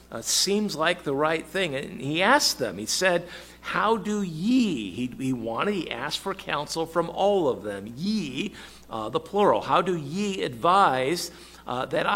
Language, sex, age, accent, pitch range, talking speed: English, male, 50-69, American, 145-195 Hz, 180 wpm